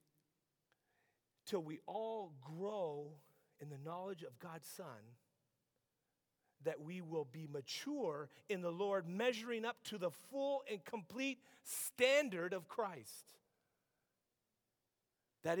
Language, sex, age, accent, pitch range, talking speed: English, male, 40-59, American, 160-220 Hz, 110 wpm